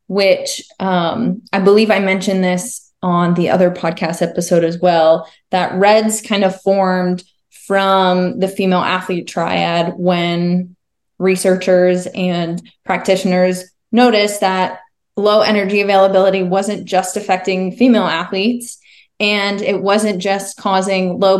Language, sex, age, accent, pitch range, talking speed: English, female, 20-39, American, 180-205 Hz, 125 wpm